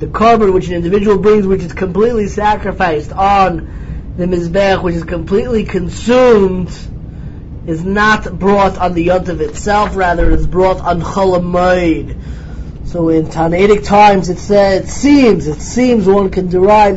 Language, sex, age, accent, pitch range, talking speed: English, male, 20-39, American, 170-210 Hz, 150 wpm